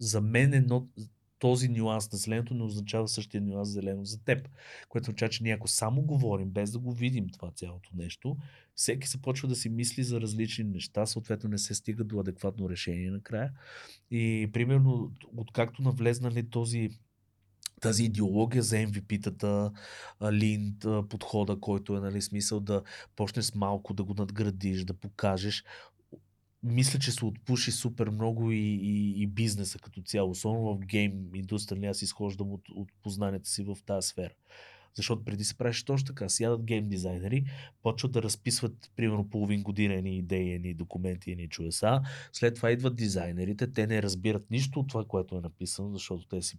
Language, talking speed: Bulgarian, 170 wpm